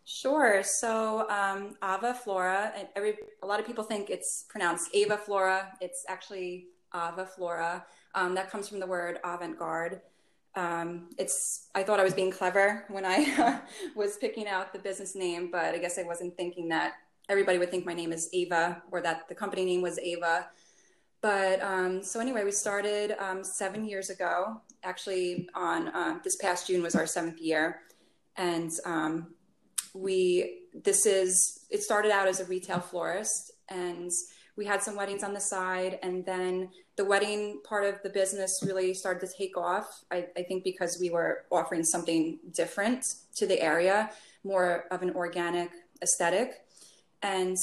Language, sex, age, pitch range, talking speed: English, female, 20-39, 175-200 Hz, 175 wpm